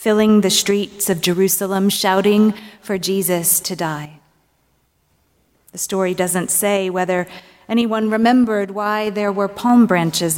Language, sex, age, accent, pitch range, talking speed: English, female, 30-49, American, 170-210 Hz, 125 wpm